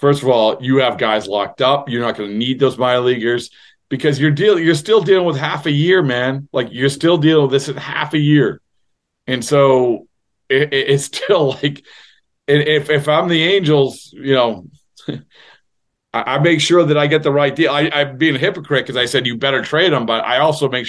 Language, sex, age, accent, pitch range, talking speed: English, male, 40-59, American, 115-145 Hz, 220 wpm